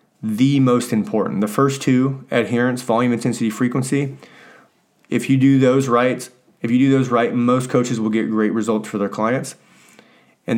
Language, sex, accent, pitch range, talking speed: English, male, American, 105-130 Hz, 170 wpm